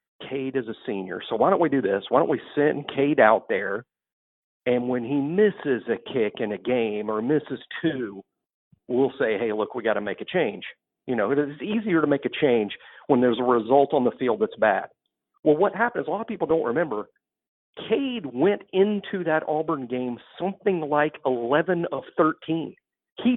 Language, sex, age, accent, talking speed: English, male, 50-69, American, 200 wpm